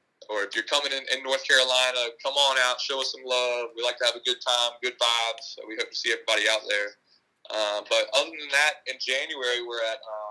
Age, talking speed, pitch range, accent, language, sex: 20-39, 250 wpm, 110-135 Hz, American, English, male